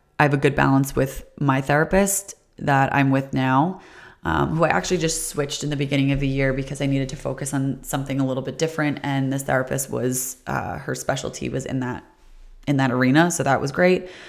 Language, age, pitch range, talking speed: English, 30-49, 135-150 Hz, 220 wpm